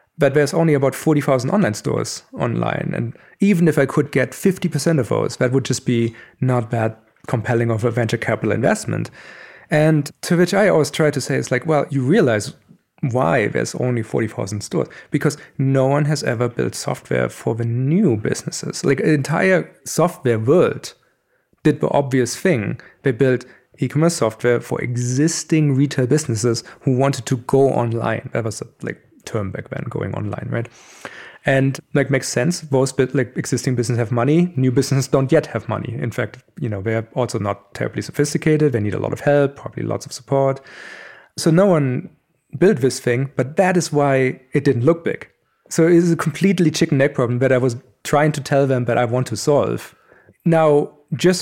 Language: English